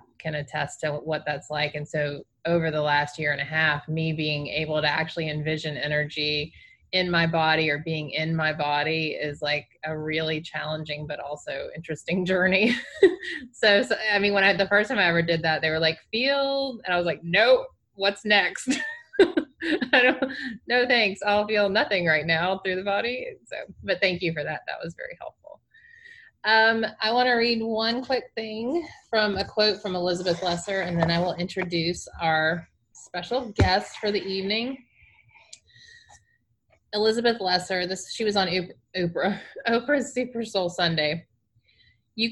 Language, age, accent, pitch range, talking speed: English, 20-39, American, 155-215 Hz, 175 wpm